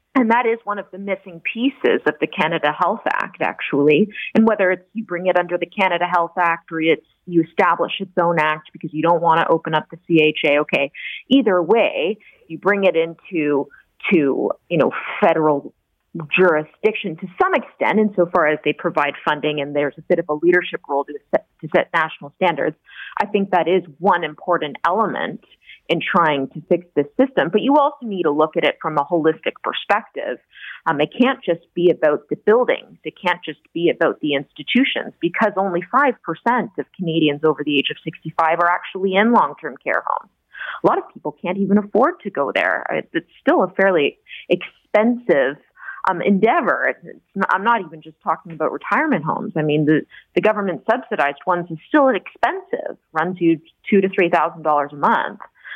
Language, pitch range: English, 155-210 Hz